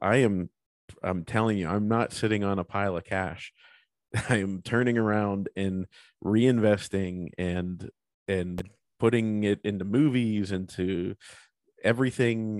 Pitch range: 95-115 Hz